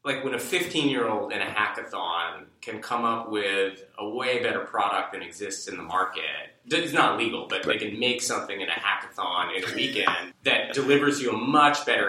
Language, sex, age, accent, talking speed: English, male, 20-39, American, 200 wpm